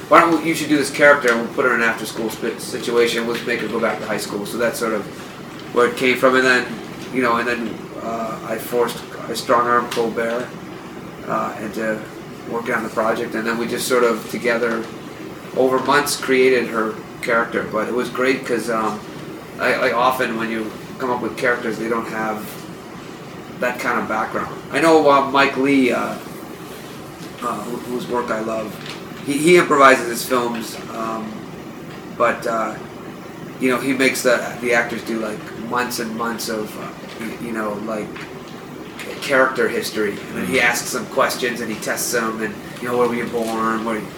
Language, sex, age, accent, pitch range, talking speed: English, male, 30-49, American, 110-130 Hz, 195 wpm